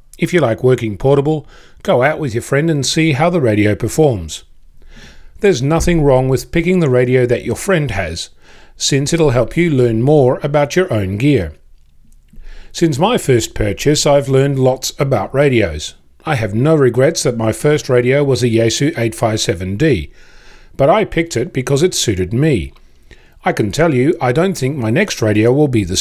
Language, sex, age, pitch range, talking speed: English, male, 40-59, 105-150 Hz, 180 wpm